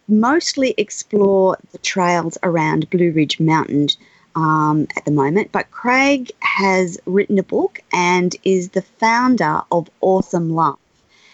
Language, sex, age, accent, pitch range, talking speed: English, female, 30-49, Australian, 165-205 Hz, 125 wpm